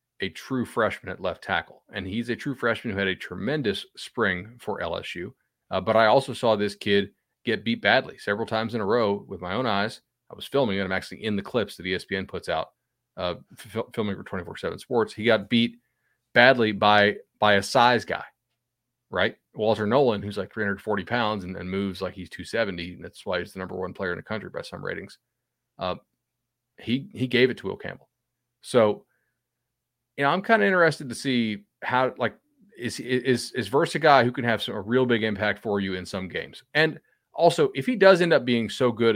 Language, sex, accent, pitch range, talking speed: English, male, American, 100-125 Hz, 215 wpm